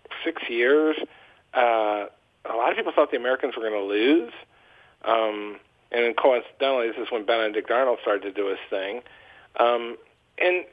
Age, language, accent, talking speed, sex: 50-69, English, American, 155 wpm, male